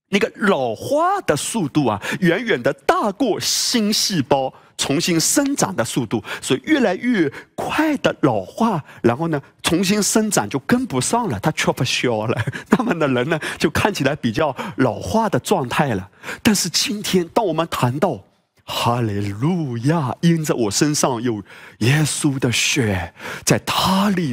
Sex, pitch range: male, 120-180 Hz